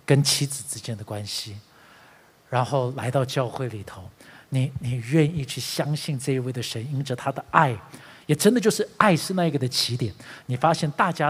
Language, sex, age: Chinese, male, 50-69